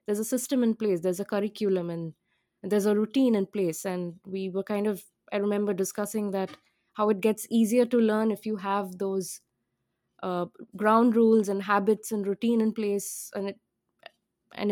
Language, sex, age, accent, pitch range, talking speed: English, female, 20-39, Indian, 195-225 Hz, 185 wpm